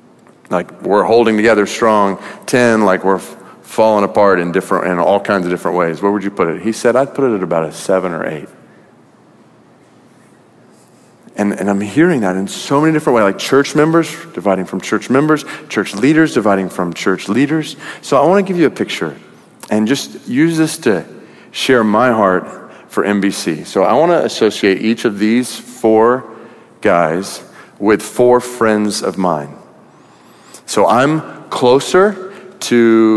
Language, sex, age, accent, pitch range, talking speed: English, male, 40-59, American, 100-145 Hz, 170 wpm